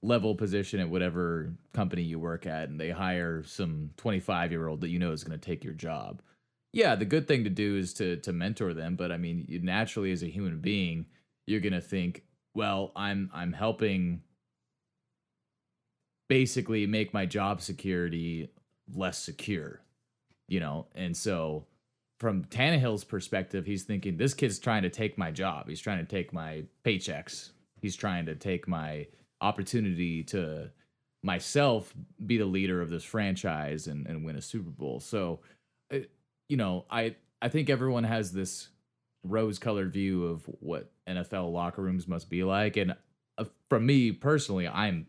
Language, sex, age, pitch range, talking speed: English, male, 30-49, 85-110 Hz, 165 wpm